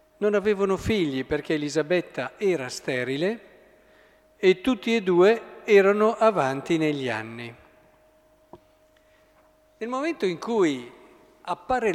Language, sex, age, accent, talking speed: Italian, male, 50-69, native, 100 wpm